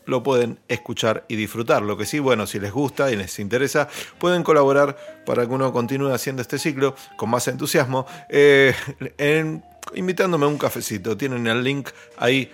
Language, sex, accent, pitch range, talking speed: Spanish, male, Argentinian, 120-160 Hz, 170 wpm